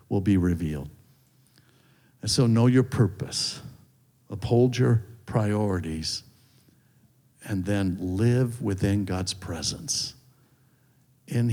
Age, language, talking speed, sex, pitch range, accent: 60-79, English, 95 wpm, male, 100-130 Hz, American